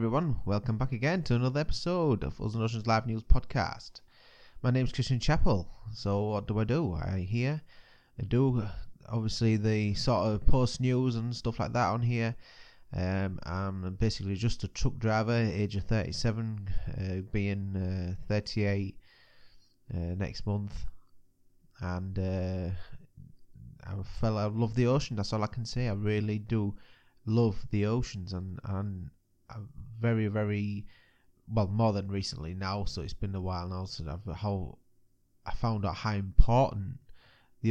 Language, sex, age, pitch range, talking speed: English, male, 20-39, 95-115 Hz, 160 wpm